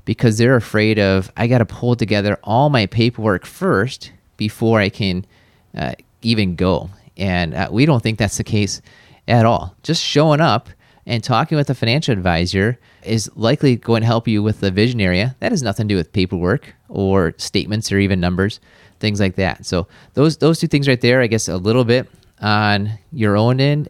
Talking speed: 200 wpm